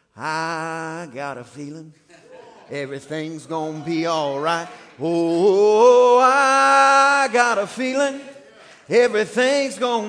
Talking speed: 100 wpm